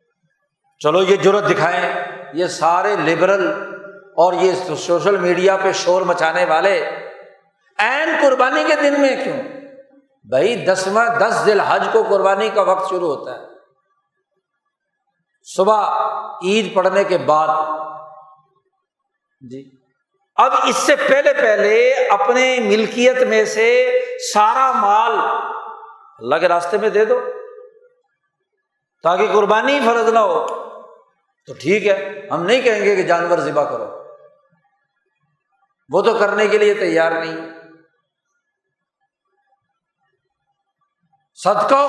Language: Urdu